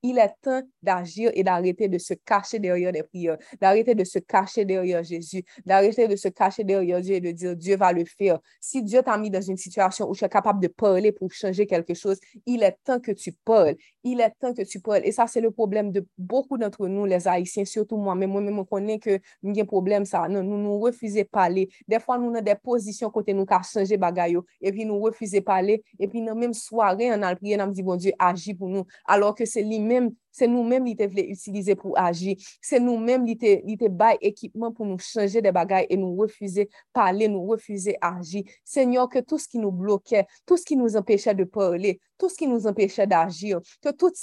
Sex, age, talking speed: female, 30-49, 240 wpm